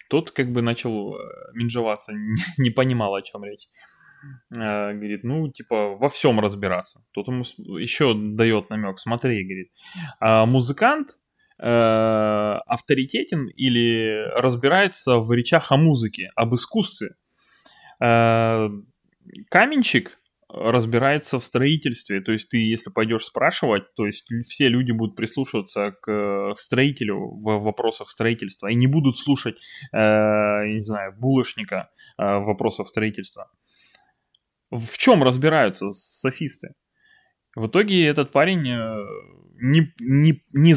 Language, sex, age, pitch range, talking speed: Russian, male, 20-39, 110-140 Hz, 115 wpm